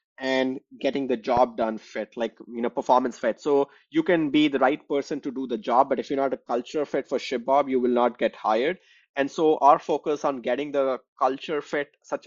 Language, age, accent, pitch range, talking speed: English, 20-39, Indian, 120-140 Hz, 225 wpm